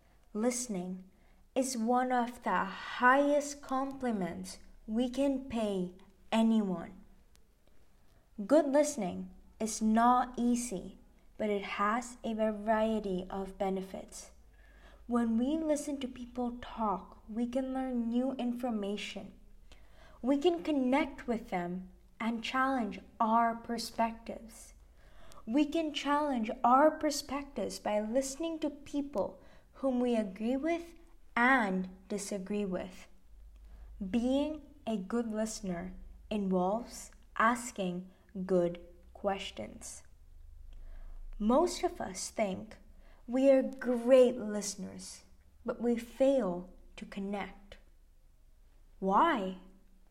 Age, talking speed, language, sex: 20-39, 95 wpm, English, female